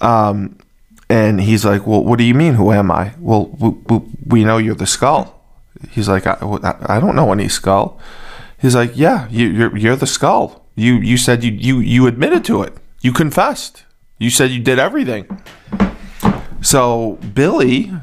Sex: male